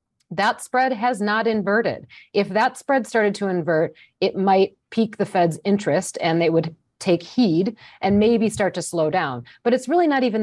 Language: English